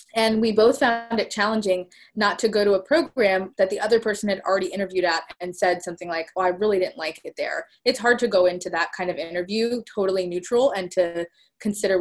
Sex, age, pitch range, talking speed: female, 20-39, 180-205 Hz, 230 wpm